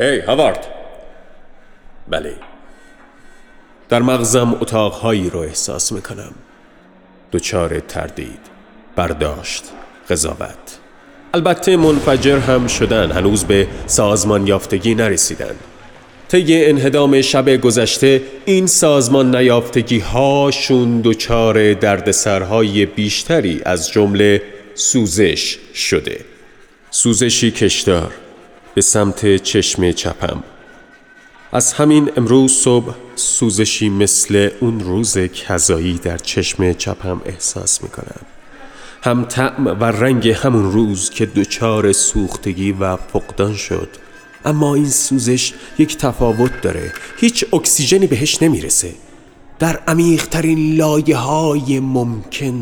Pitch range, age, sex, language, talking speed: 105-140 Hz, 40-59, male, Persian, 95 wpm